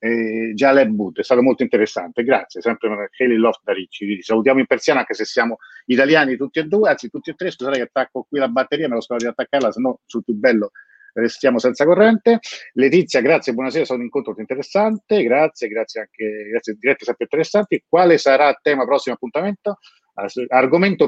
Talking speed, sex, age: 195 wpm, male, 40-59